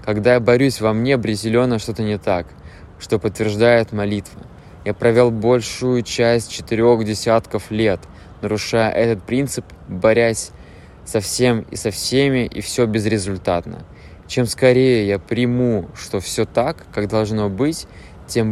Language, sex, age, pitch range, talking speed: English, male, 20-39, 100-120 Hz, 135 wpm